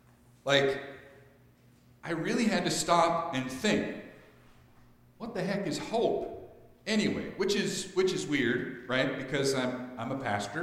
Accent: American